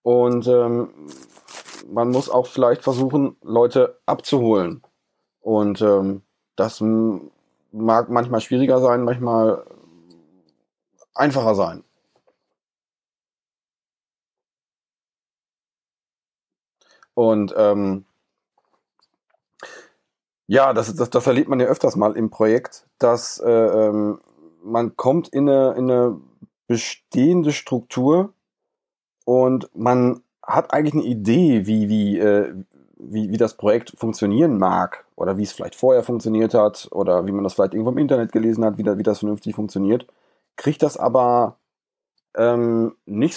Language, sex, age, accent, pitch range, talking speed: German, male, 40-59, German, 105-130 Hz, 110 wpm